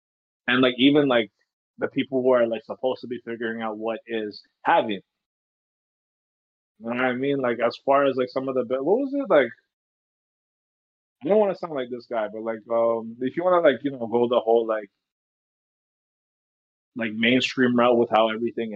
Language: English